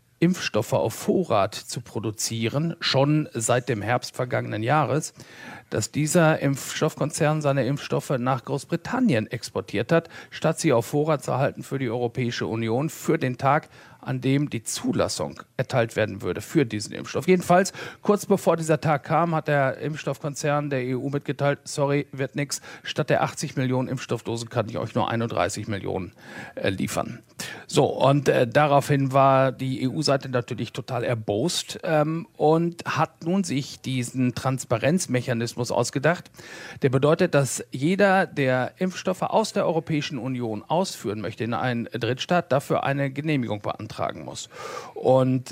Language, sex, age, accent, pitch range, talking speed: German, male, 50-69, German, 125-155 Hz, 145 wpm